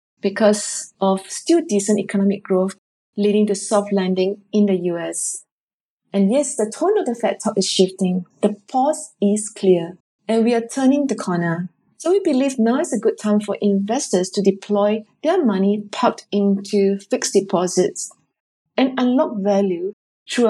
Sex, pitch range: female, 195-230 Hz